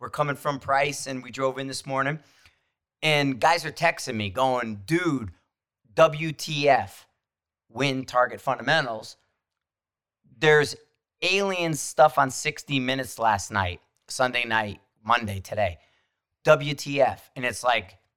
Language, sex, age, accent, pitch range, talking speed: English, male, 40-59, American, 110-150 Hz, 120 wpm